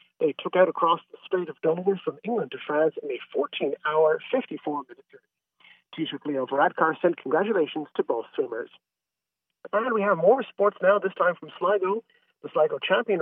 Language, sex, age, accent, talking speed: English, male, 40-59, American, 170 wpm